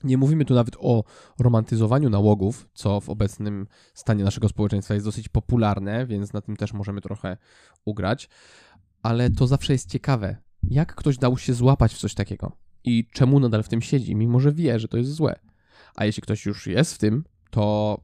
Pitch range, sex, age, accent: 105-135 Hz, male, 20-39, native